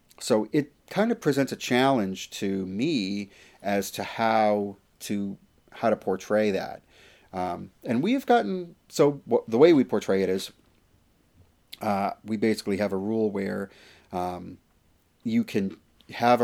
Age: 30-49